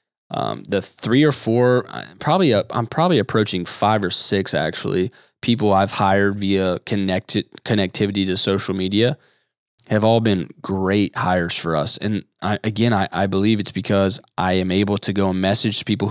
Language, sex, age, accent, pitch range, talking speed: English, male, 20-39, American, 100-130 Hz, 170 wpm